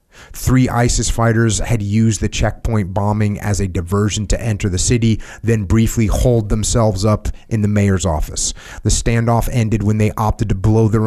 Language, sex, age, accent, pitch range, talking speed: English, male, 30-49, American, 100-115 Hz, 180 wpm